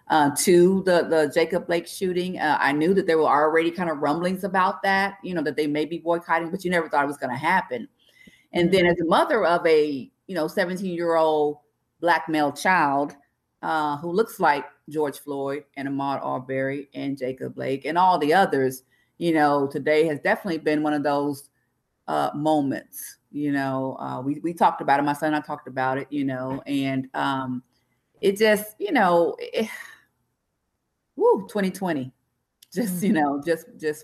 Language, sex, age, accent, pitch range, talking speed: English, female, 40-59, American, 140-180 Hz, 190 wpm